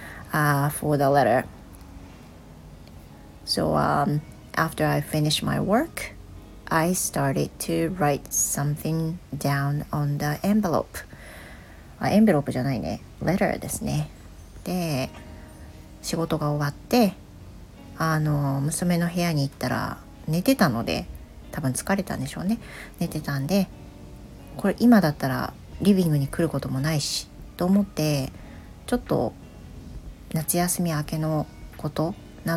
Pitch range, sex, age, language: 125-175 Hz, female, 40-59, Japanese